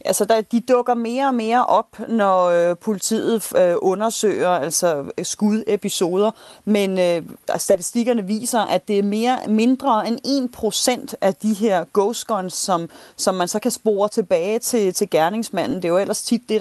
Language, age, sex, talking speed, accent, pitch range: Danish, 30-49, female, 170 wpm, native, 185-235 Hz